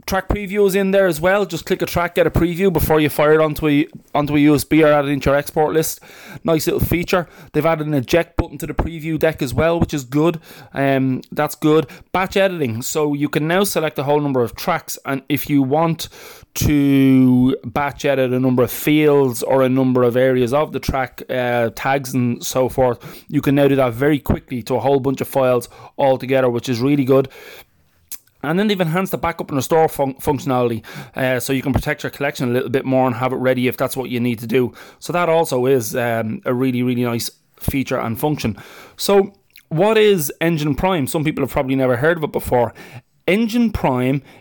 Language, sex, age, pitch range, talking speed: English, male, 20-39, 125-160 Hz, 220 wpm